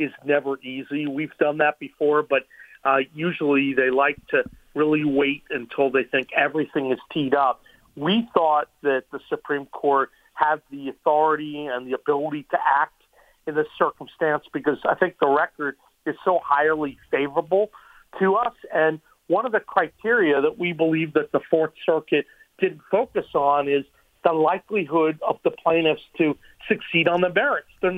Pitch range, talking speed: 145-180 Hz, 165 wpm